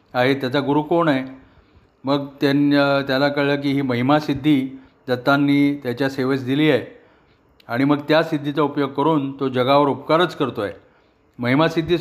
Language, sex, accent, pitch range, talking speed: Marathi, male, native, 130-150 Hz, 145 wpm